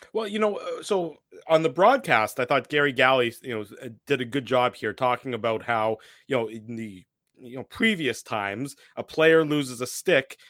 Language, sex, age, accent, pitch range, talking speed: English, male, 30-49, American, 120-150 Hz, 195 wpm